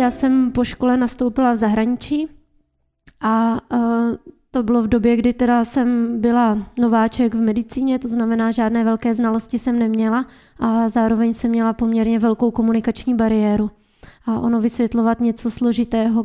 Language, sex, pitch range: Czech, female, 230-240 Hz